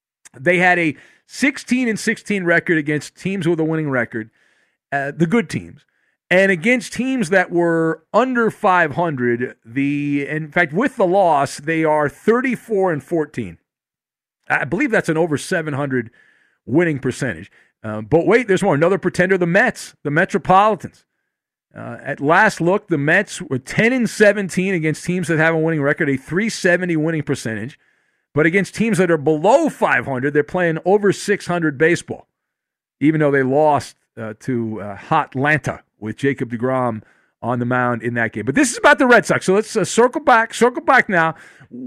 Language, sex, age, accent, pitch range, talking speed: English, male, 40-59, American, 145-215 Hz, 170 wpm